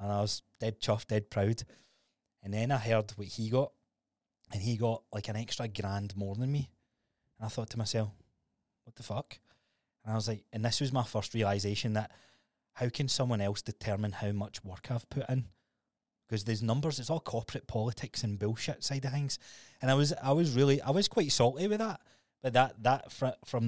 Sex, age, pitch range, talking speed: male, 20-39, 100-125 Hz, 210 wpm